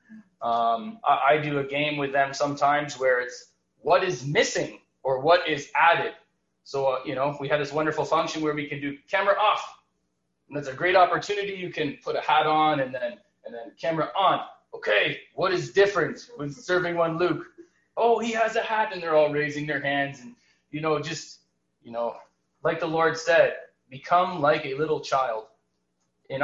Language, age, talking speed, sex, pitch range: English, 20-39, 195 wpm, male, 135-185 Hz